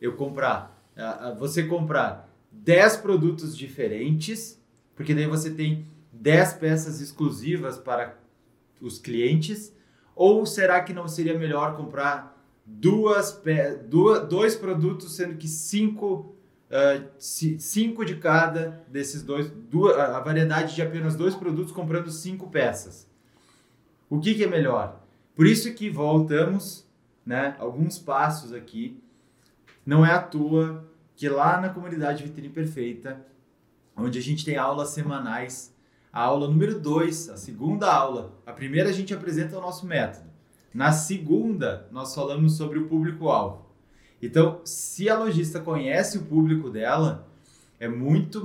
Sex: male